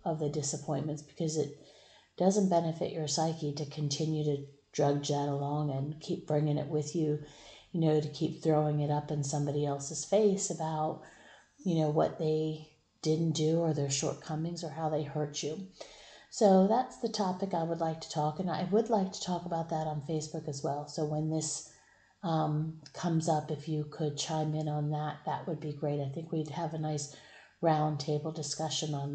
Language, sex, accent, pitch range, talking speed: English, female, American, 150-170 Hz, 195 wpm